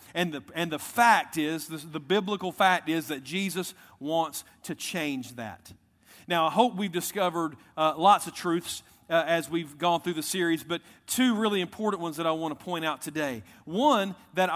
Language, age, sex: English, 40-59, male